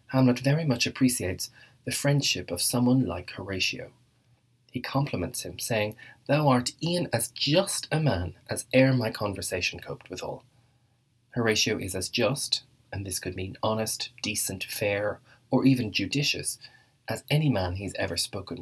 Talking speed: 150 wpm